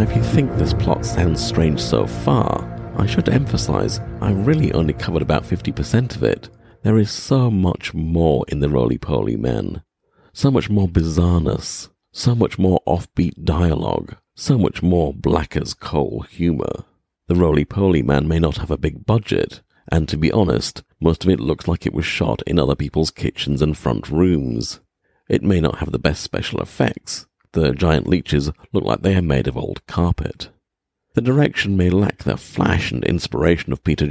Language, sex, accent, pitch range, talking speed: English, male, British, 75-100 Hz, 175 wpm